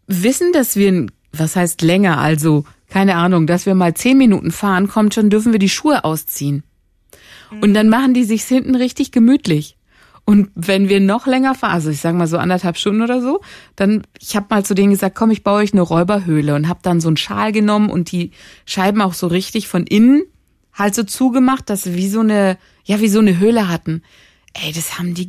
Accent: German